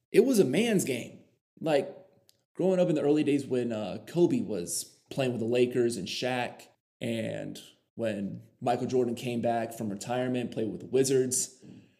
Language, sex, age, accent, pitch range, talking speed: English, male, 20-39, American, 115-135 Hz, 170 wpm